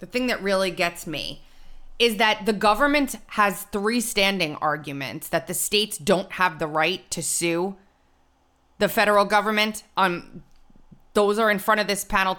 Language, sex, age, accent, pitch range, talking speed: English, female, 20-39, American, 170-225 Hz, 165 wpm